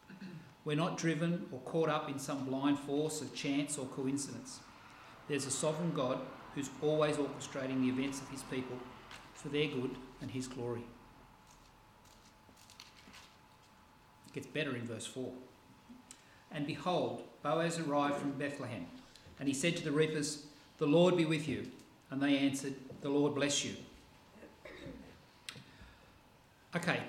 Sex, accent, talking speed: male, Australian, 140 wpm